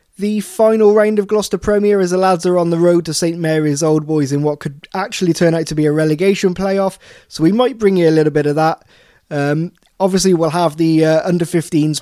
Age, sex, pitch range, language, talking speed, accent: 20-39, male, 145-185 Hz, English, 230 wpm, British